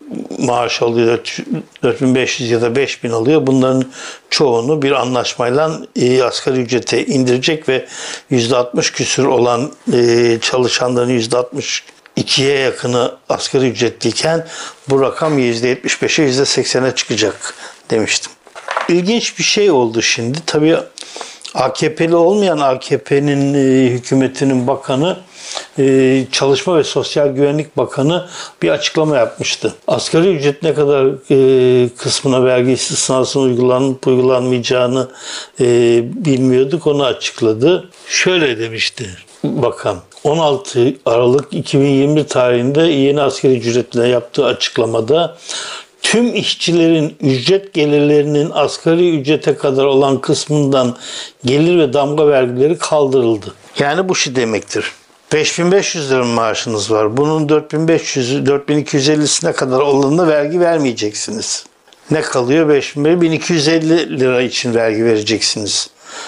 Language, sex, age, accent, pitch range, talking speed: Turkish, male, 60-79, native, 125-150 Hz, 105 wpm